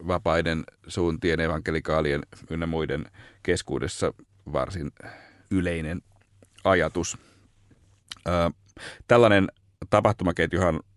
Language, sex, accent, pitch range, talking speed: Finnish, male, native, 80-100 Hz, 65 wpm